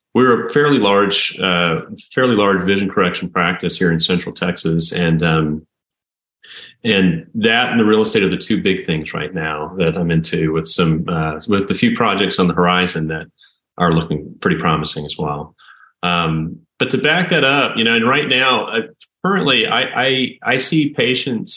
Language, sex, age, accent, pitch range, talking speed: English, male, 30-49, American, 85-105 Hz, 185 wpm